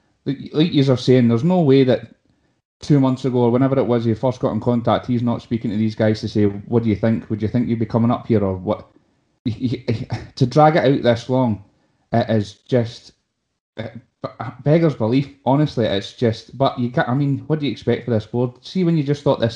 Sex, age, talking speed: male, 20-39, 230 wpm